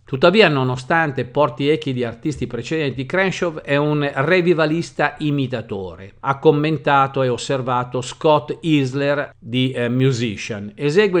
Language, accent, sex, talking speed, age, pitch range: Italian, native, male, 115 wpm, 50-69, 130-170 Hz